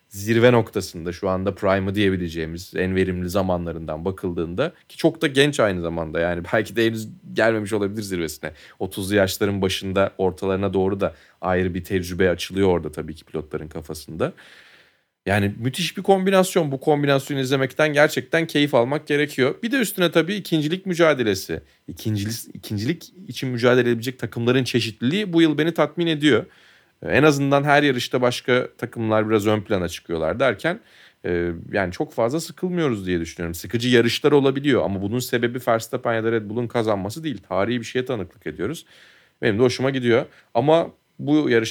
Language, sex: Turkish, male